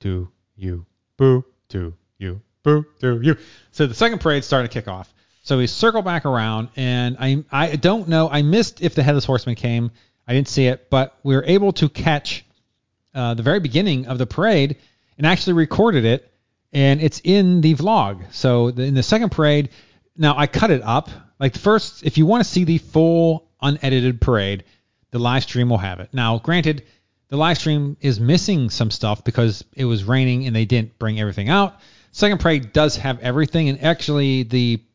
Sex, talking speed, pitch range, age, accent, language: male, 195 wpm, 115-150 Hz, 30-49, American, English